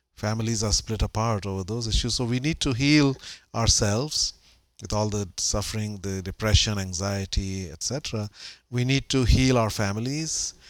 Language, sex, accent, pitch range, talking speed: English, male, Indian, 100-125 Hz, 150 wpm